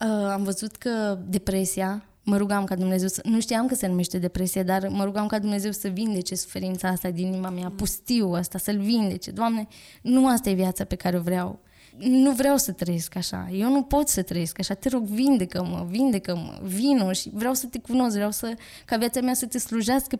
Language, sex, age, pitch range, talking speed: Romanian, female, 20-39, 190-230 Hz, 205 wpm